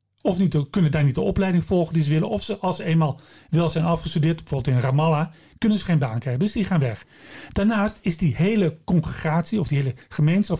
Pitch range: 140-195 Hz